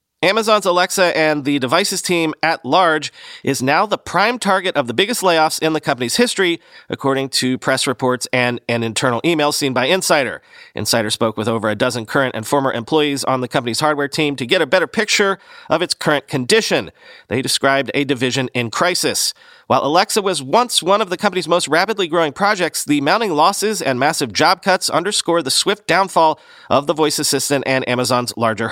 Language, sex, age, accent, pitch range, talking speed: English, male, 40-59, American, 130-190 Hz, 190 wpm